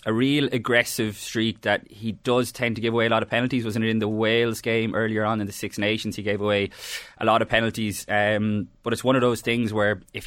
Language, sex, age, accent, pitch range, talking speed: English, male, 20-39, Irish, 95-110 Hz, 250 wpm